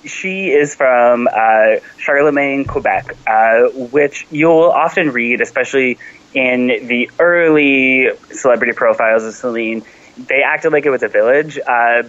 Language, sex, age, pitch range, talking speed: English, male, 20-39, 110-135 Hz, 135 wpm